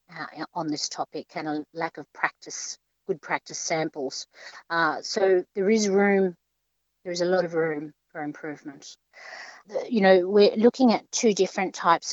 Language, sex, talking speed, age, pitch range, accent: English, female, 165 wpm, 50-69, 155-175 Hz, Australian